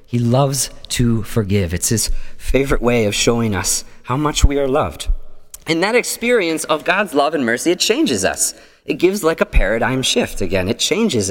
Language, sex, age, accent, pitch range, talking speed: English, male, 30-49, American, 115-155 Hz, 190 wpm